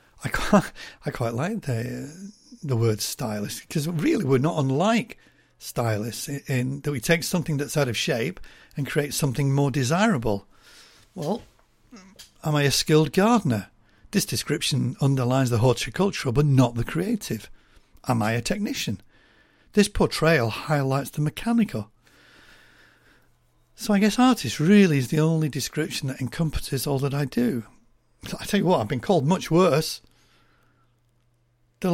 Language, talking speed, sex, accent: English, 145 wpm, male, British